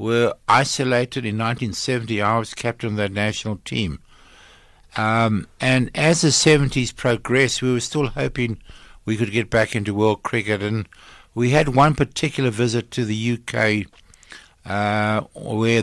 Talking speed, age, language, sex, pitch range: 150 wpm, 60-79, English, male, 105-125 Hz